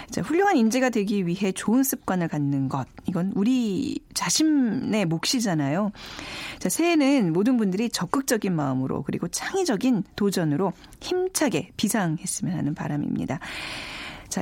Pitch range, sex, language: 175-245 Hz, female, Korean